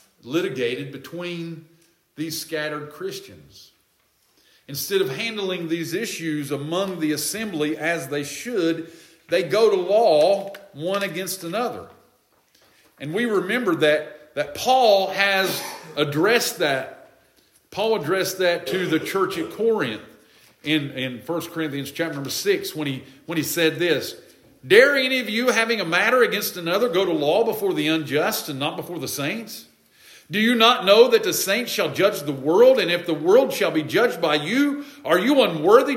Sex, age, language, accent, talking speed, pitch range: male, 50-69, English, American, 160 wpm, 170-275 Hz